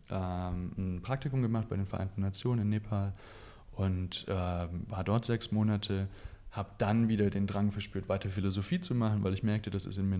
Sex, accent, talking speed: male, German, 190 wpm